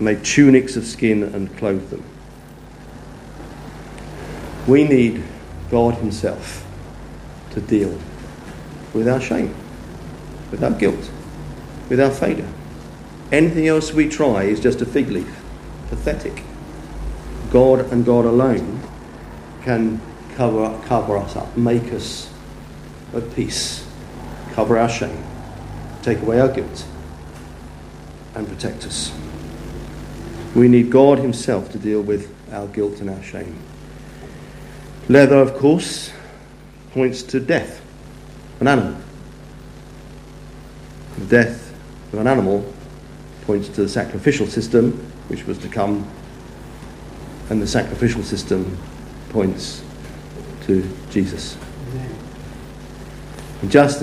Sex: male